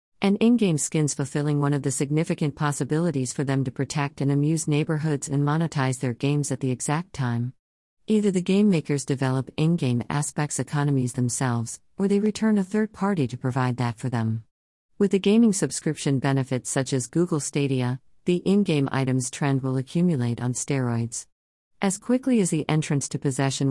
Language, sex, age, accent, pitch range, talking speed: English, female, 50-69, American, 130-155 Hz, 170 wpm